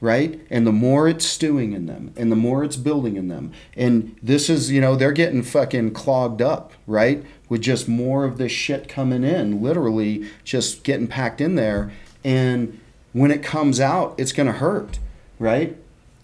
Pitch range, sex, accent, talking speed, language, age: 115-145 Hz, male, American, 185 wpm, English, 40-59